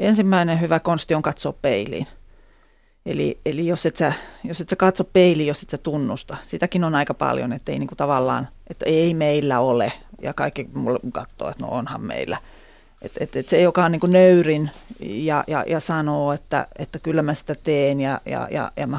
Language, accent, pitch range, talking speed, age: Finnish, native, 145-175 Hz, 195 wpm, 40-59